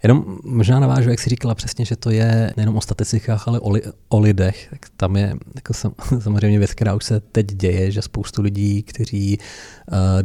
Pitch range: 100-110 Hz